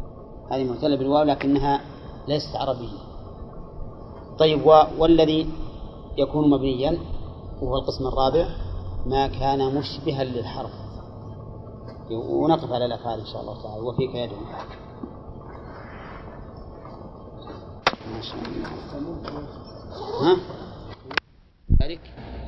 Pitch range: 120-145 Hz